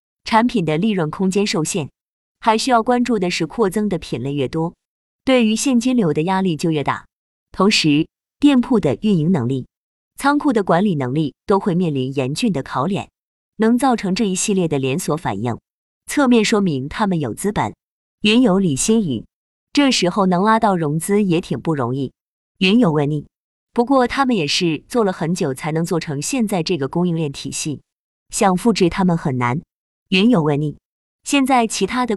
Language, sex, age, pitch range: Chinese, female, 20-39, 155-225 Hz